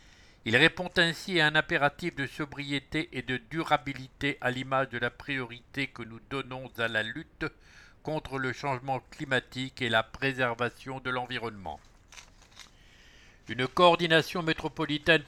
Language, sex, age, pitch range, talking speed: English, male, 60-79, 125-145 Hz, 135 wpm